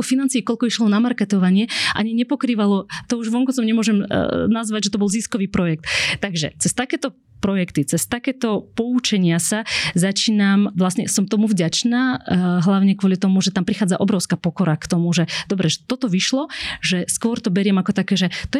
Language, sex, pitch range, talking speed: Slovak, female, 180-220 Hz, 180 wpm